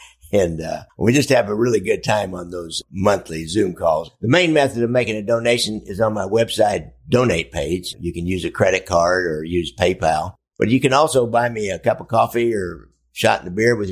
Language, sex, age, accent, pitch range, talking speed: English, male, 50-69, American, 95-120 Hz, 225 wpm